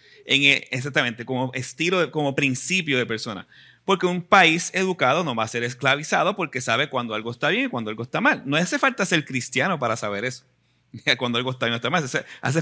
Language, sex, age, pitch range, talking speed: Spanish, male, 30-49, 120-160 Hz, 225 wpm